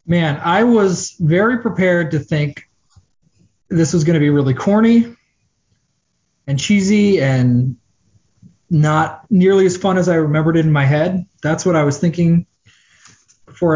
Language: English